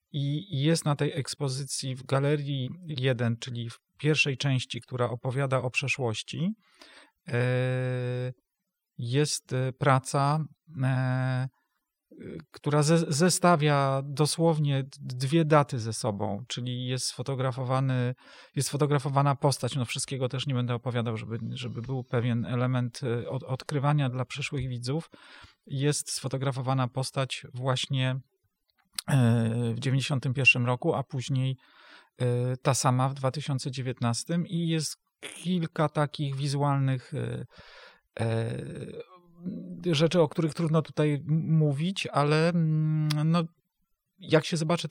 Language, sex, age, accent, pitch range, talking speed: Polish, male, 40-59, native, 130-155 Hz, 100 wpm